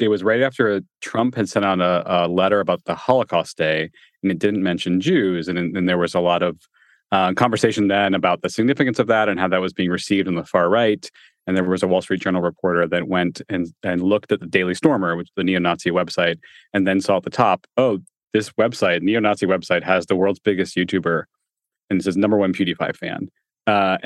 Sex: male